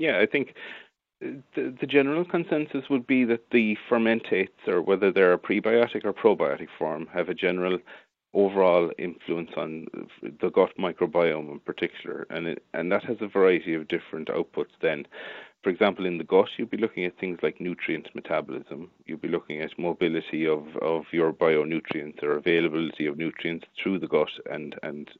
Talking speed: 175 wpm